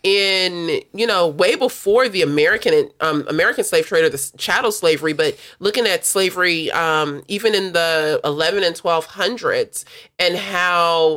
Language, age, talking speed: English, 30-49, 155 wpm